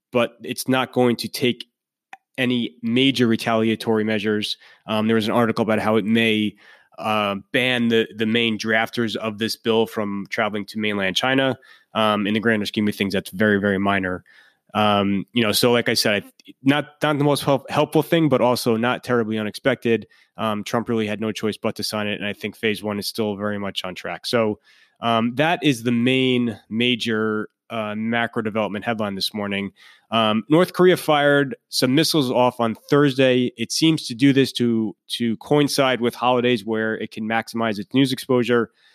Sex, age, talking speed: male, 20-39, 190 wpm